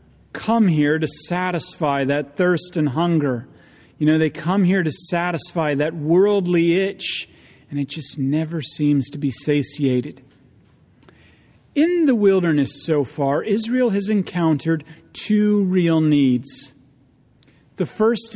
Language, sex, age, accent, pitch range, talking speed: English, male, 40-59, American, 150-190 Hz, 130 wpm